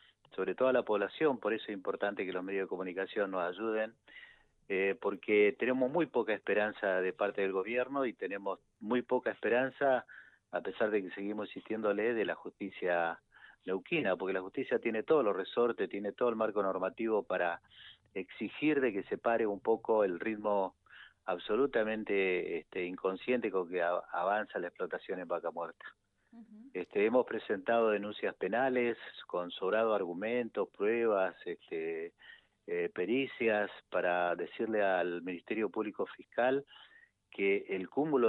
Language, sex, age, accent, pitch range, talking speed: Spanish, male, 40-59, Argentinian, 95-140 Hz, 145 wpm